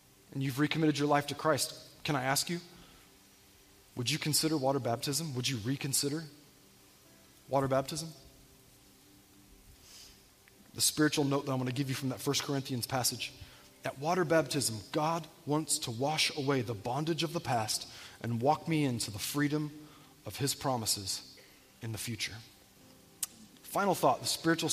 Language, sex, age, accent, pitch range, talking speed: English, male, 20-39, American, 120-155 Hz, 155 wpm